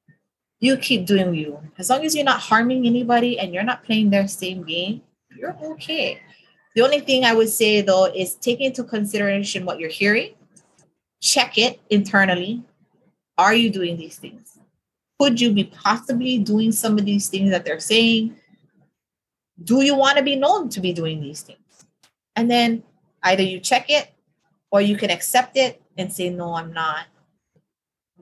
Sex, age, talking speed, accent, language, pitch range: female, 30-49, 170 wpm, American, English, 170-235 Hz